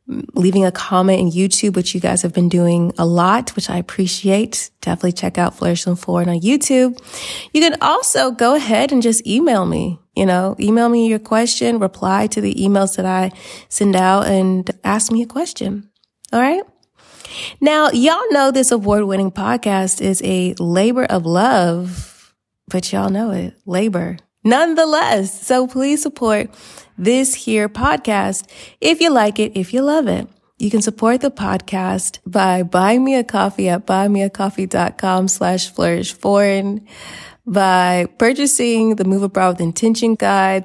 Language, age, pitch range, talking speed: English, 20-39, 185-230 Hz, 160 wpm